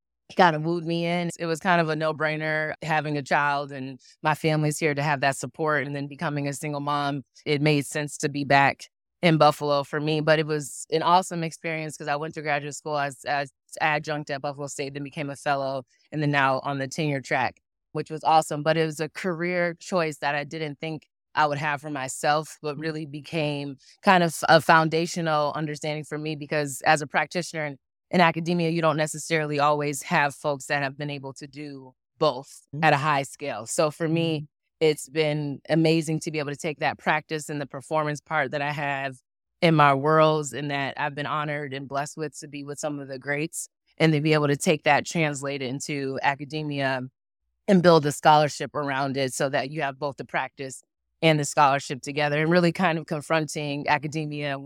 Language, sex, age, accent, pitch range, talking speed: English, female, 20-39, American, 145-160 Hz, 210 wpm